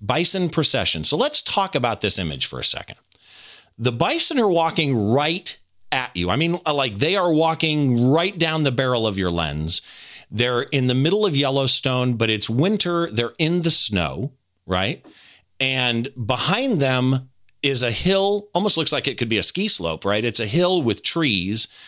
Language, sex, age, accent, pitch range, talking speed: English, male, 40-59, American, 110-165 Hz, 180 wpm